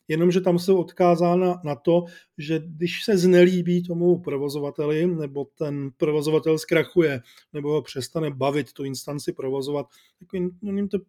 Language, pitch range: Czech, 145-175 Hz